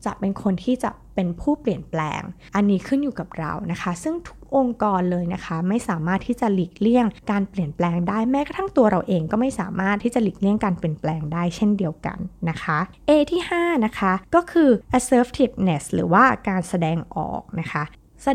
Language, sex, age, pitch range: Thai, female, 20-39, 175-240 Hz